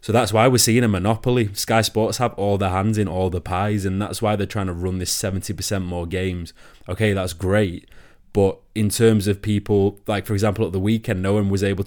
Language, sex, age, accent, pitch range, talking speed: English, male, 20-39, British, 95-115 Hz, 235 wpm